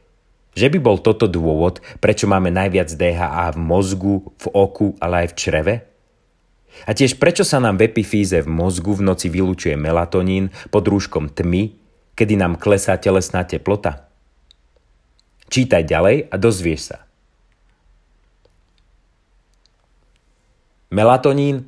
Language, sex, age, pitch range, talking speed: Slovak, male, 30-49, 85-105 Hz, 120 wpm